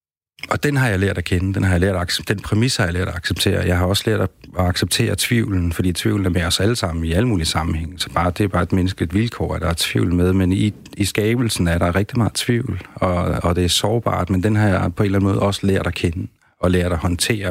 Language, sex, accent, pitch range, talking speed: Danish, male, native, 85-100 Hz, 280 wpm